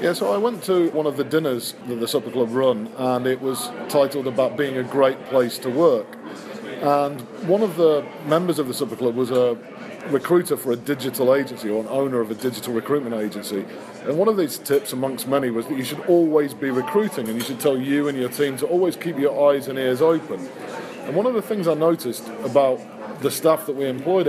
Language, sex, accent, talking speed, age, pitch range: English, male, British, 225 wpm, 40-59, 125-155 Hz